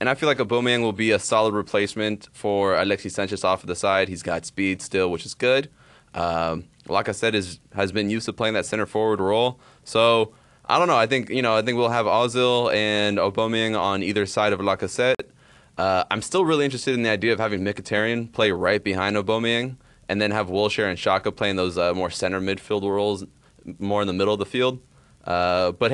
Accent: American